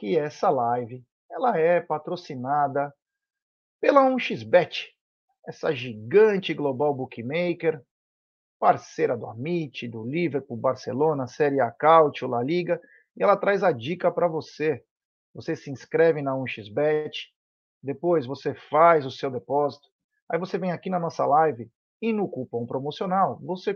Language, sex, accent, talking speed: Portuguese, male, Brazilian, 135 wpm